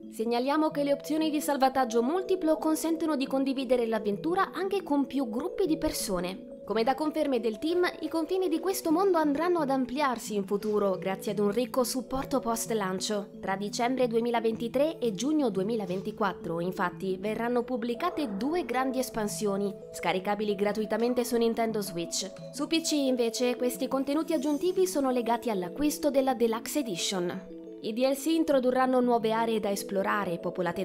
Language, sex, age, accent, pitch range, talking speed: Italian, female, 20-39, native, 215-295 Hz, 150 wpm